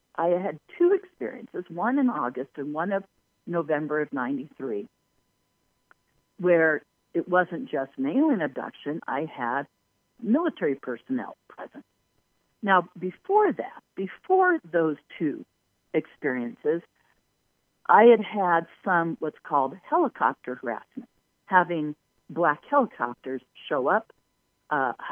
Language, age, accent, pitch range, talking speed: English, 50-69, American, 145-245 Hz, 110 wpm